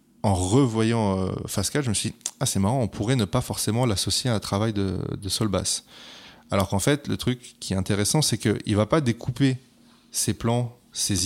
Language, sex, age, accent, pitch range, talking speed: French, male, 20-39, French, 95-120 Hz, 220 wpm